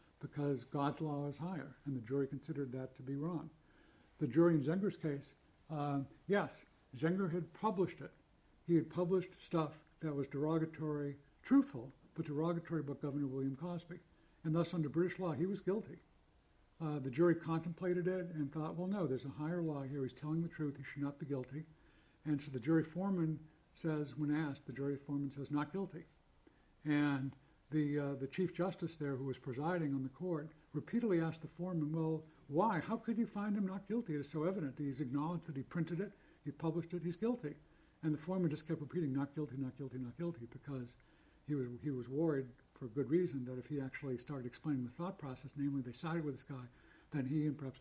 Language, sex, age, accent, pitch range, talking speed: English, male, 60-79, American, 140-170 Hz, 205 wpm